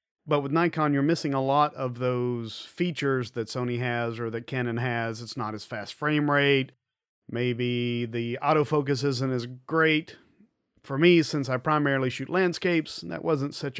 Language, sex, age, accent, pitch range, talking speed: English, male, 40-59, American, 125-160 Hz, 170 wpm